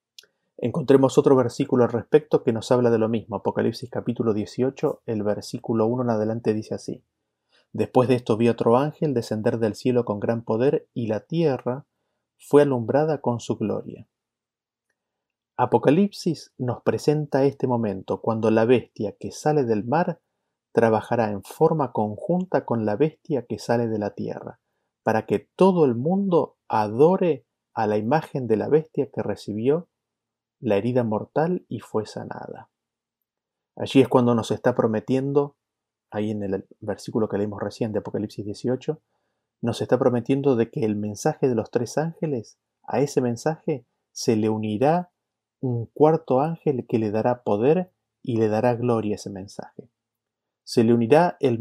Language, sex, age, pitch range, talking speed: Spanish, male, 30-49, 110-145 Hz, 155 wpm